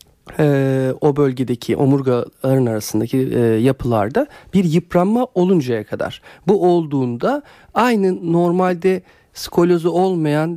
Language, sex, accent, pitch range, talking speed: Turkish, male, native, 125-180 Hz, 95 wpm